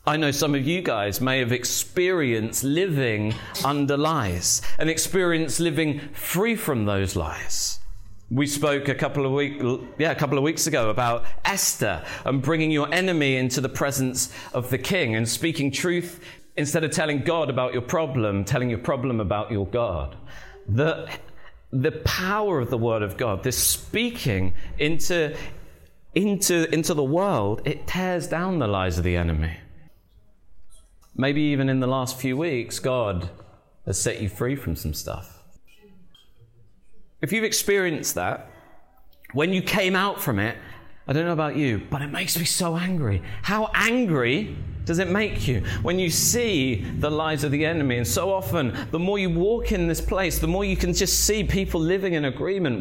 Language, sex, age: English, male, 40-59